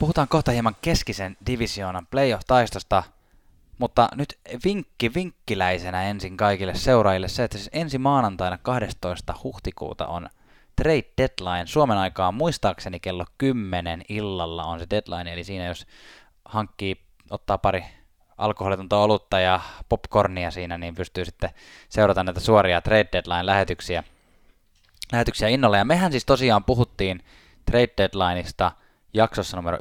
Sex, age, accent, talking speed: male, 20-39, native, 125 wpm